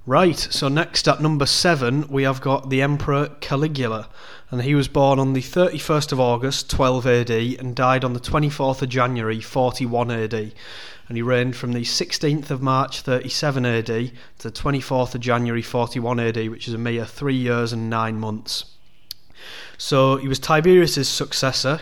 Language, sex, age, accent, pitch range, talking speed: English, male, 30-49, British, 120-140 Hz, 175 wpm